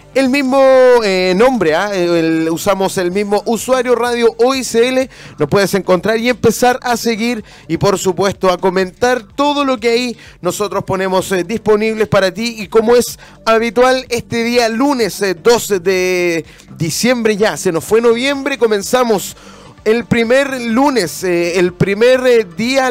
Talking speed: 150 wpm